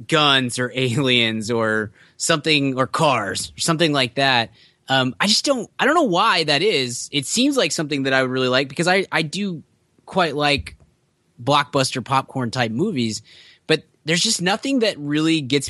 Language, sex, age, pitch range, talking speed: English, male, 20-39, 125-170 Hz, 180 wpm